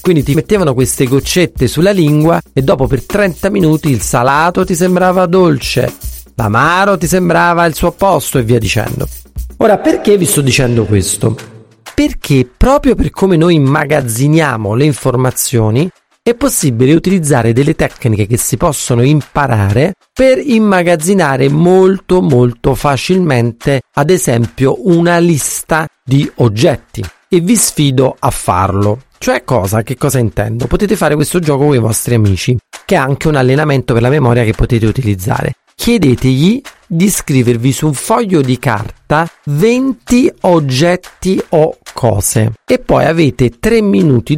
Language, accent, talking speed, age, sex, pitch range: Italian, native, 145 wpm, 40-59, male, 120-175 Hz